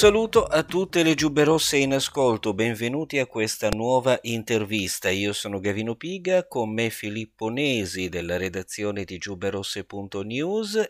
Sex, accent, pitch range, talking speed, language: male, native, 95-135 Hz, 140 wpm, Italian